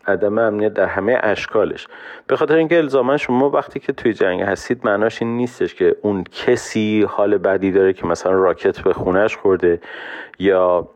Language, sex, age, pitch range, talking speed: Persian, male, 40-59, 90-120 Hz, 170 wpm